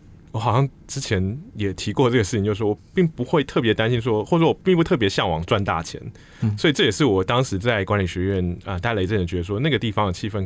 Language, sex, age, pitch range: Chinese, male, 20-39, 90-120 Hz